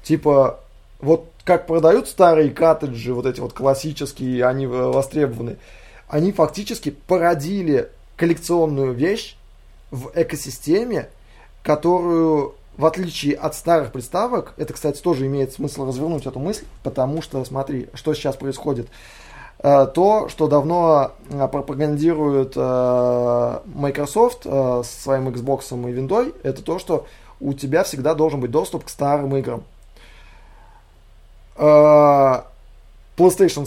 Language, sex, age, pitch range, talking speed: Russian, male, 20-39, 130-160 Hz, 110 wpm